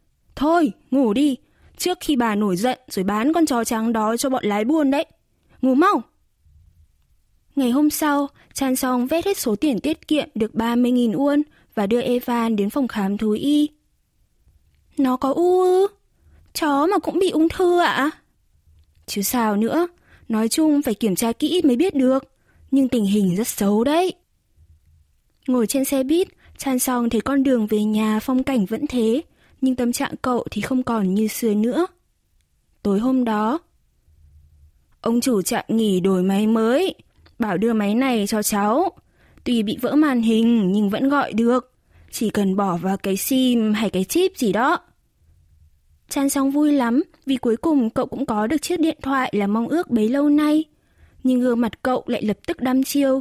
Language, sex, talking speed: Vietnamese, female, 185 wpm